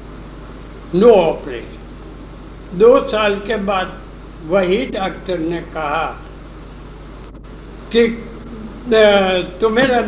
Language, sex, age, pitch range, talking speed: Hindi, male, 60-79, 155-195 Hz, 70 wpm